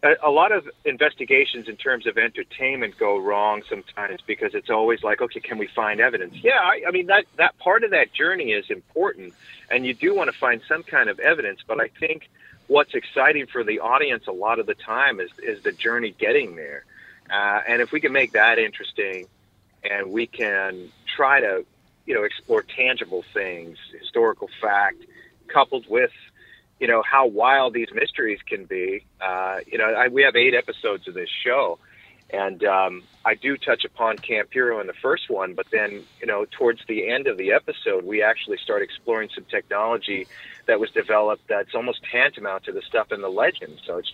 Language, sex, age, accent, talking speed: English, male, 40-59, American, 195 wpm